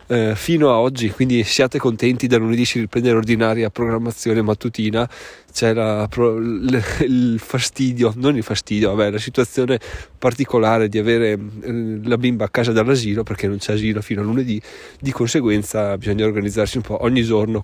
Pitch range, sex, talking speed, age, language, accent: 110-130 Hz, male, 155 wpm, 20-39, Italian, native